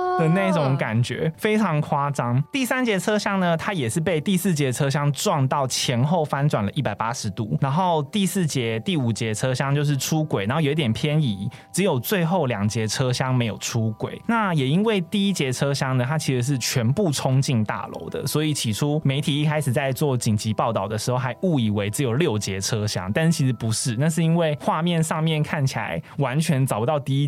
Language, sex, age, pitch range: Chinese, male, 20-39, 120-160 Hz